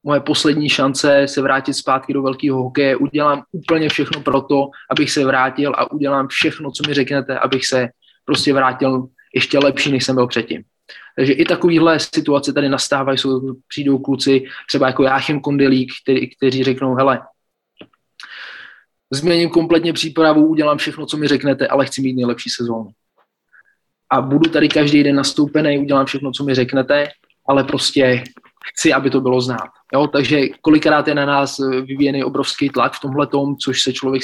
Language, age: English, 20-39